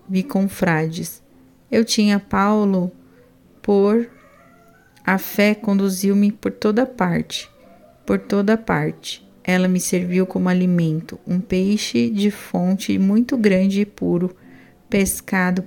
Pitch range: 175-200 Hz